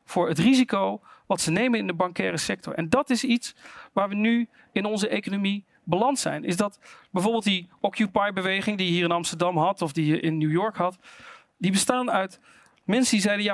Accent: Dutch